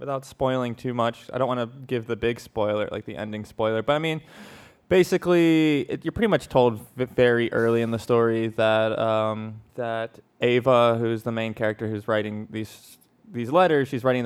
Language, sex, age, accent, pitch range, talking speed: English, male, 20-39, American, 110-130 Hz, 185 wpm